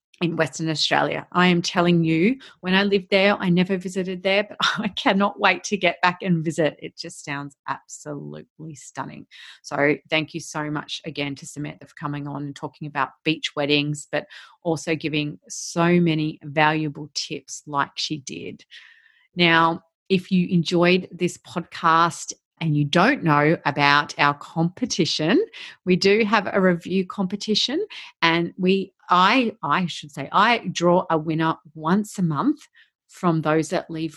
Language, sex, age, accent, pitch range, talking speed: English, female, 30-49, Australian, 155-190 Hz, 160 wpm